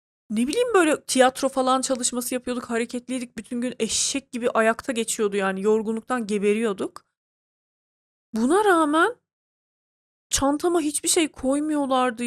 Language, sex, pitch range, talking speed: Turkish, female, 220-280 Hz, 110 wpm